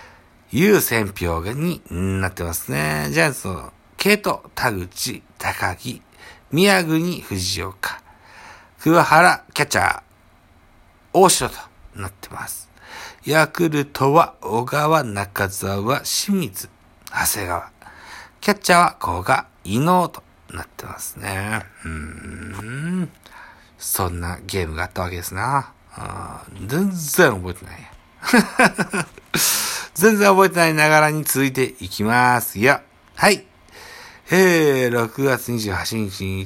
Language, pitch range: Japanese, 95-155 Hz